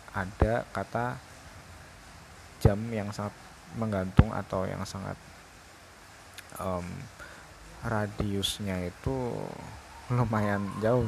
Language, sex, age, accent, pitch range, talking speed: Indonesian, male, 20-39, native, 90-110 Hz, 75 wpm